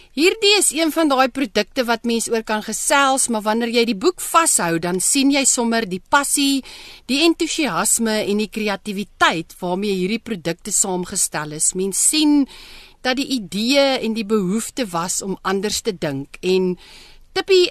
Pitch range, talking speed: 195-275 Hz, 165 wpm